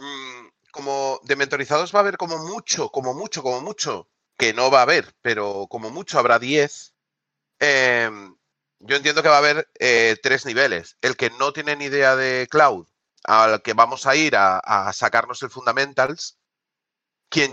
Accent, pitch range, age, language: Spanish, 125-155 Hz, 30-49, Spanish